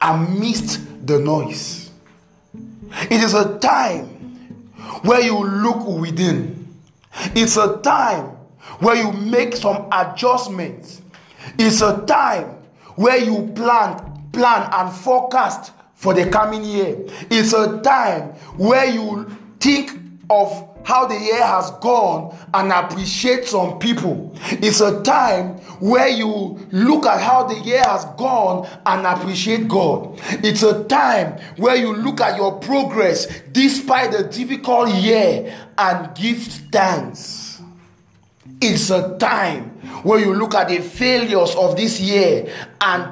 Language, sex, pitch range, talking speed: English, male, 185-235 Hz, 130 wpm